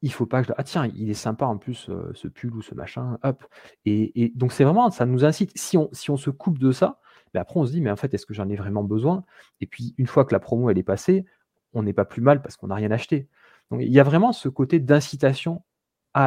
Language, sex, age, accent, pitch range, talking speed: French, male, 30-49, French, 115-150 Hz, 305 wpm